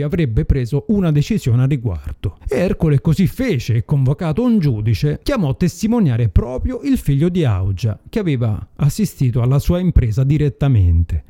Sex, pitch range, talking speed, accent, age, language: male, 115-165 Hz, 150 wpm, native, 30-49, Italian